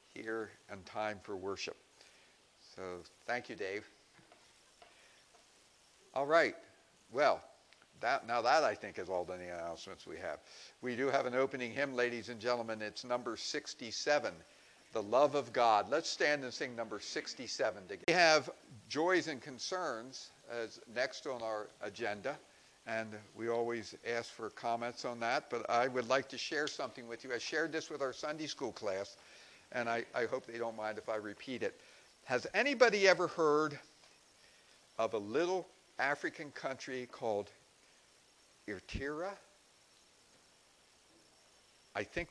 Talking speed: 145 wpm